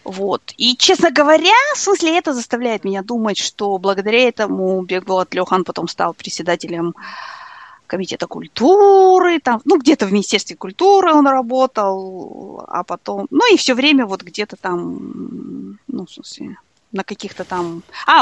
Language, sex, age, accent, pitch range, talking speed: Russian, female, 20-39, native, 190-260 Hz, 145 wpm